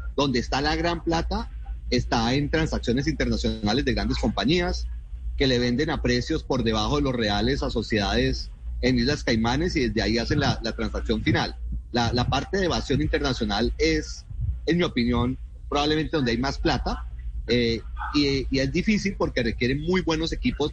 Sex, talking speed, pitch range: male, 175 wpm, 115-150 Hz